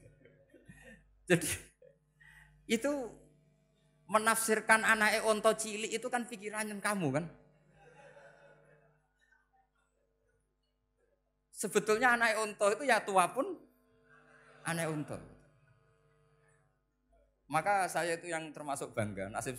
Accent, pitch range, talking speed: native, 125-195 Hz, 85 wpm